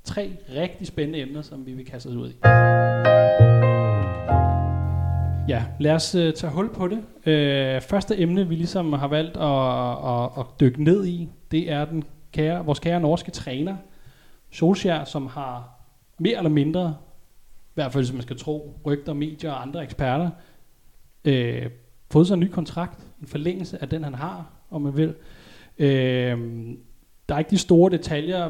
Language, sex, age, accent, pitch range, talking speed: Danish, male, 30-49, native, 130-170 Hz, 165 wpm